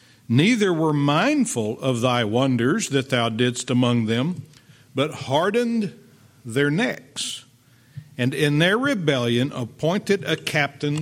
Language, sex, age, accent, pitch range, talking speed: English, male, 50-69, American, 125-150 Hz, 120 wpm